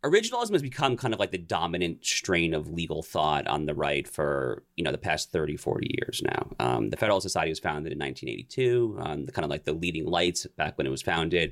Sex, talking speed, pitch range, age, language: male, 235 wpm, 80-100 Hz, 30-49, English